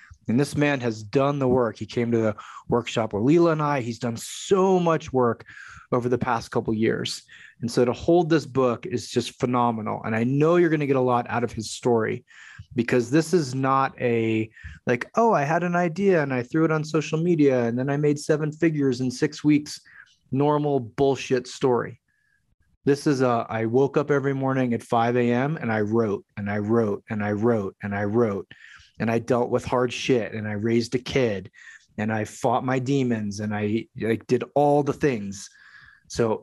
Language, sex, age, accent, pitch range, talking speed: English, male, 30-49, American, 120-160 Hz, 205 wpm